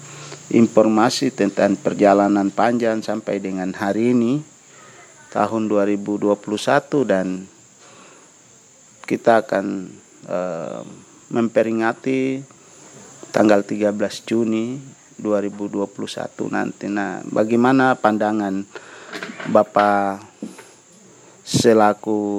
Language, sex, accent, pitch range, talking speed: Indonesian, male, native, 100-120 Hz, 65 wpm